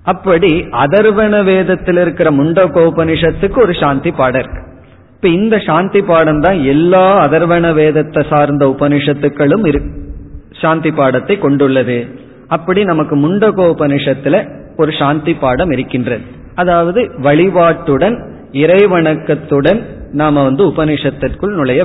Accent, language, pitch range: native, Tamil, 140-175 Hz